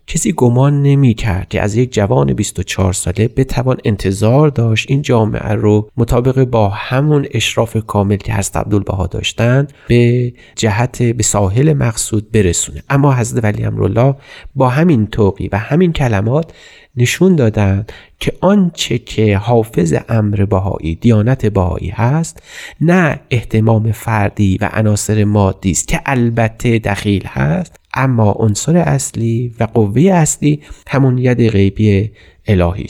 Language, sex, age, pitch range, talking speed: Persian, male, 30-49, 105-135 Hz, 130 wpm